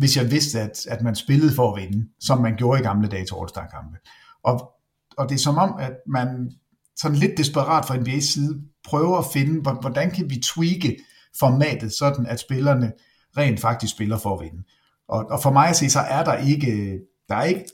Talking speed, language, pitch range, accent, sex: 210 wpm, Danish, 115-150 Hz, native, male